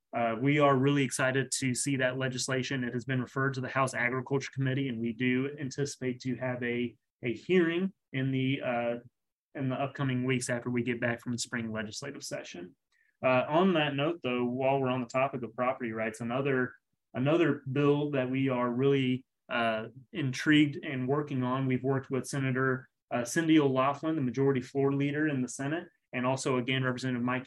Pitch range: 125-140 Hz